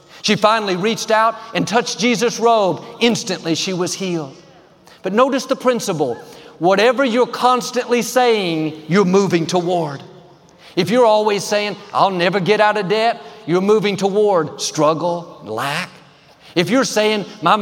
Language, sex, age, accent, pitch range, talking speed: English, male, 50-69, American, 180-225 Hz, 145 wpm